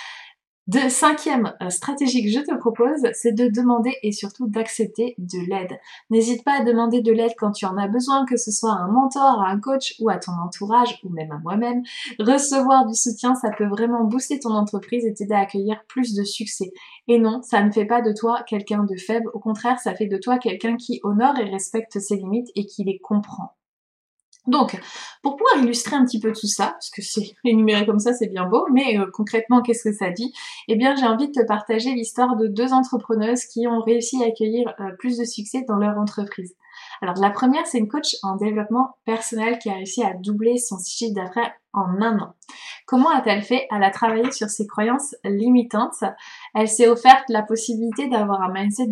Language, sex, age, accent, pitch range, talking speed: French, female, 20-39, French, 205-245 Hz, 210 wpm